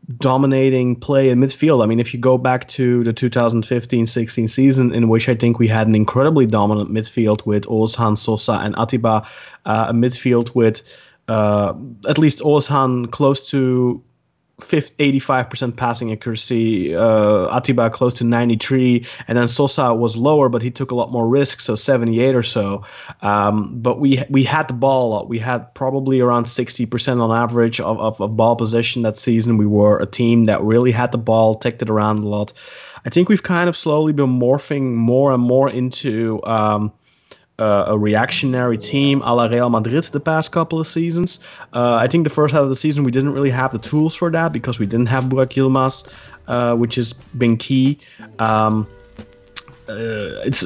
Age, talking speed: 30-49, 185 wpm